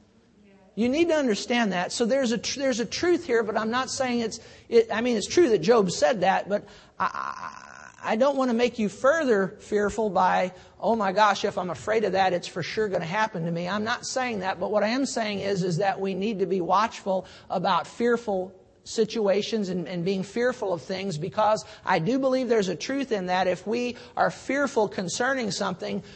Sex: male